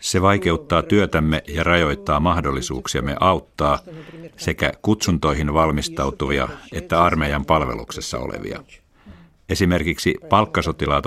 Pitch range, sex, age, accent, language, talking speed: 70-85 Hz, male, 50-69, native, Finnish, 85 wpm